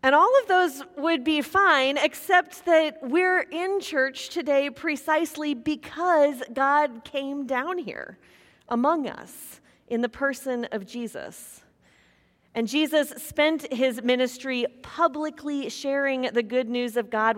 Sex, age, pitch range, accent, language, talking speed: female, 30-49, 240-300 Hz, American, English, 130 wpm